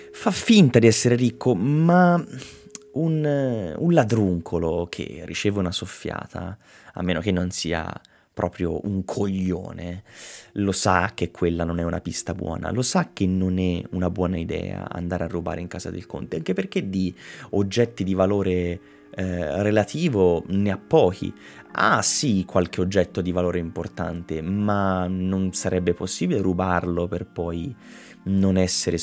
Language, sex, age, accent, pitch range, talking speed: Italian, male, 20-39, native, 90-110 Hz, 150 wpm